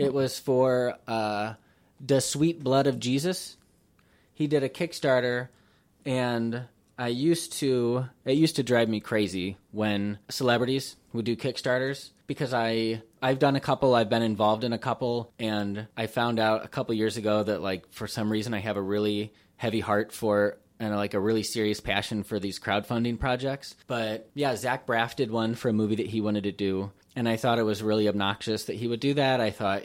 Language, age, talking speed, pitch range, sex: English, 20-39, 195 wpm, 105-125 Hz, male